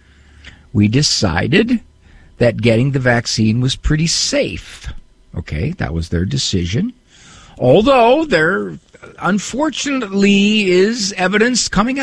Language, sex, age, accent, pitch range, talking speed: English, male, 50-69, American, 135-215 Hz, 100 wpm